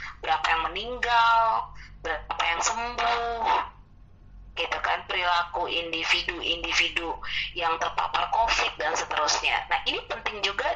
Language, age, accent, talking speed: Indonesian, 20-39, native, 110 wpm